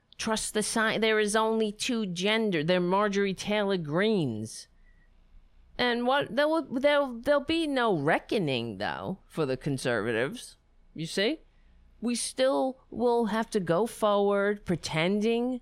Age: 40-59